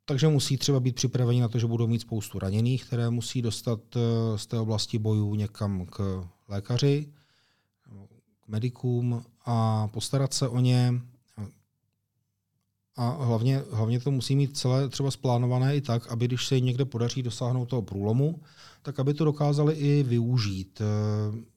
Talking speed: 150 wpm